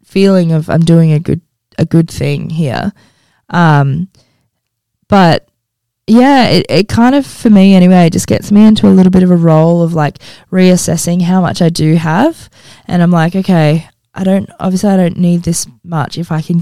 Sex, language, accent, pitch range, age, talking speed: female, English, Australian, 150-195 Hz, 20-39, 195 wpm